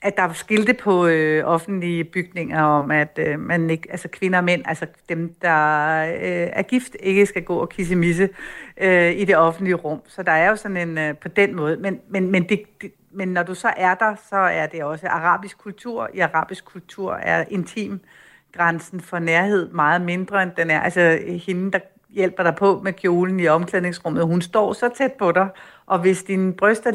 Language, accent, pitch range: Danish, native, 170-205 Hz